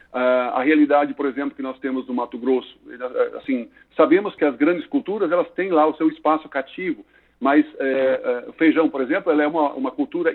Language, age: Portuguese, 50-69